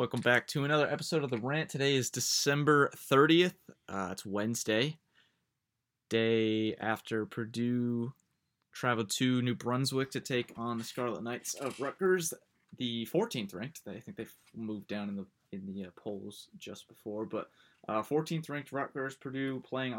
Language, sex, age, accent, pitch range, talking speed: English, male, 20-39, American, 115-150 Hz, 155 wpm